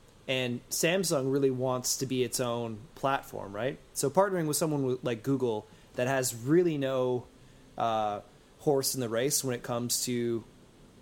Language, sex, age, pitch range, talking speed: English, male, 20-39, 120-145 Hz, 160 wpm